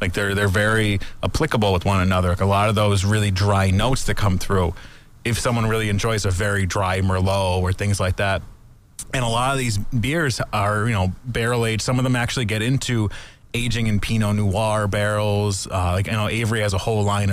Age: 30-49